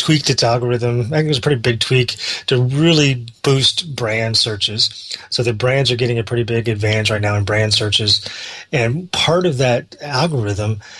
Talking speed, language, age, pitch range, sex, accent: 190 wpm, English, 30-49, 110-125 Hz, male, American